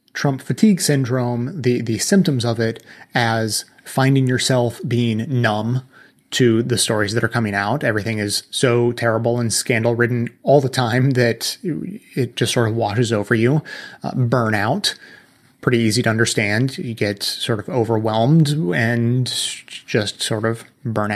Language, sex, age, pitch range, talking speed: English, male, 30-49, 115-140 Hz, 150 wpm